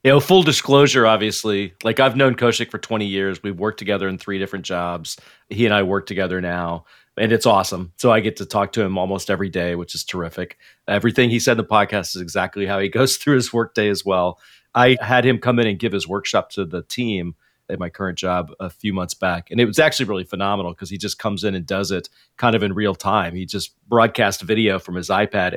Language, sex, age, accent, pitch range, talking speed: English, male, 40-59, American, 95-115 Hz, 245 wpm